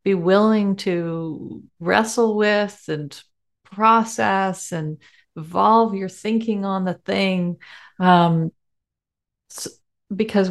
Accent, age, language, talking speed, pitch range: American, 40-59, English, 95 wpm, 170-200 Hz